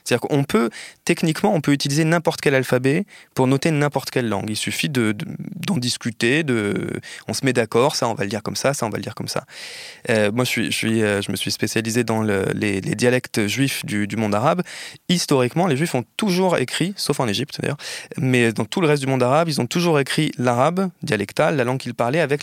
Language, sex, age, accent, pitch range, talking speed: French, male, 20-39, French, 115-155 Hz, 240 wpm